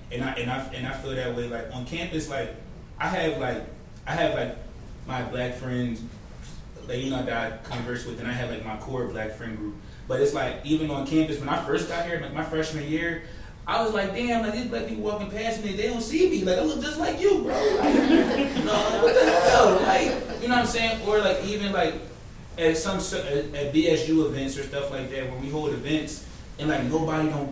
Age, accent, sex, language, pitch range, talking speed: 20-39, American, male, English, 125-155 Hz, 235 wpm